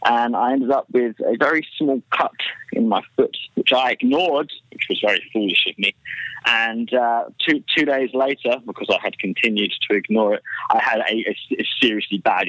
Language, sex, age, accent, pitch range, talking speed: English, male, 20-39, British, 110-135 Hz, 195 wpm